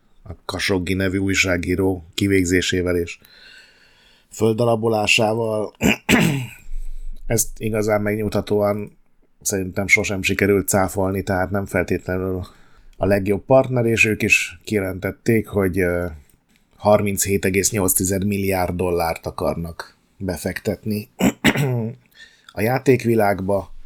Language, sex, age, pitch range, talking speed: Hungarian, male, 30-49, 90-115 Hz, 80 wpm